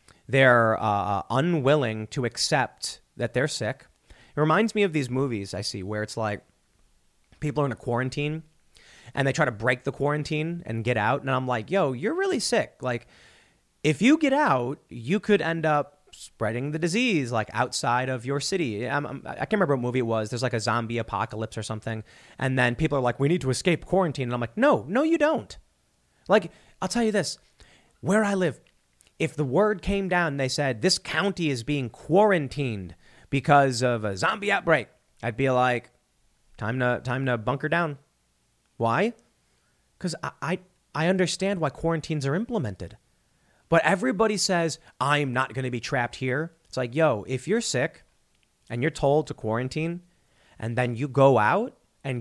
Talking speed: 185 wpm